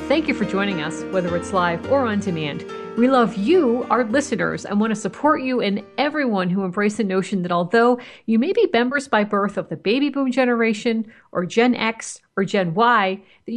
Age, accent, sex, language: 50-69, American, female, English